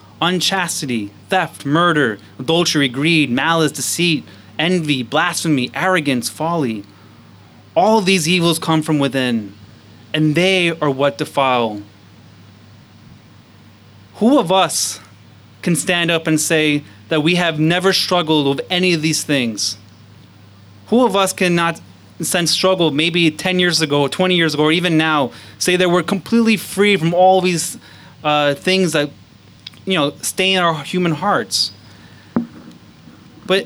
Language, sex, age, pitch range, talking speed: English, male, 30-49, 115-180 Hz, 135 wpm